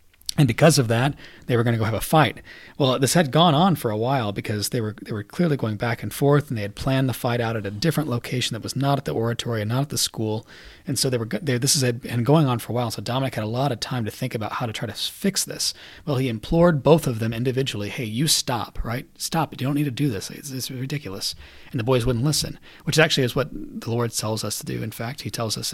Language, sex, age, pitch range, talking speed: English, male, 30-49, 110-140 Hz, 285 wpm